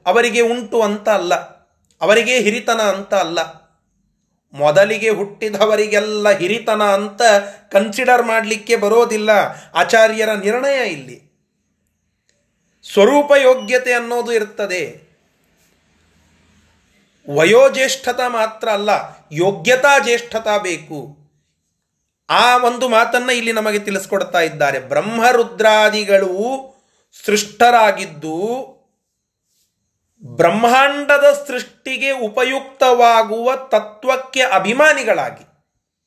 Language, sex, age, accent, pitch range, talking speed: Kannada, male, 30-49, native, 205-255 Hz, 70 wpm